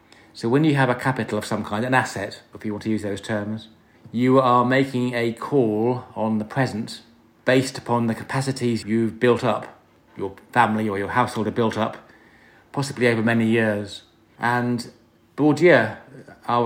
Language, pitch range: English, 110-120 Hz